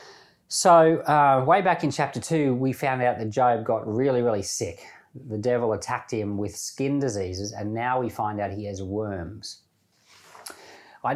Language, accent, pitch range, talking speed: English, Australian, 105-150 Hz, 170 wpm